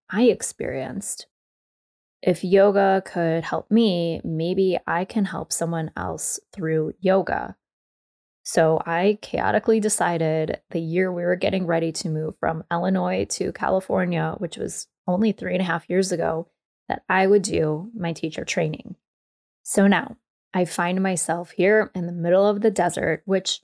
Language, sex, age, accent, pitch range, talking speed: English, female, 20-39, American, 165-190 Hz, 150 wpm